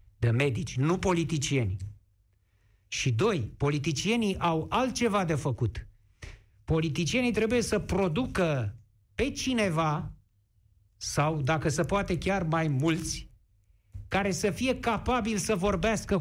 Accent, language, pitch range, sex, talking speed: native, Romanian, 120-195 Hz, male, 110 wpm